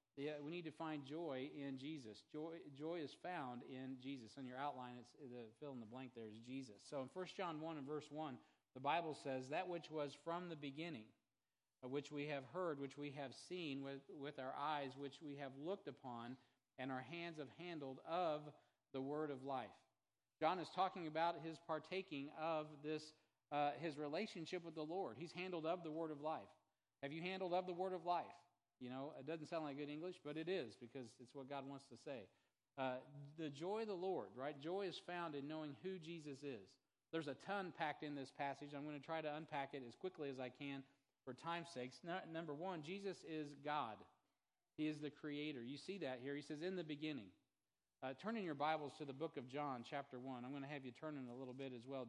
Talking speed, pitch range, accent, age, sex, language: 225 wpm, 135-160 Hz, American, 40-59, male, English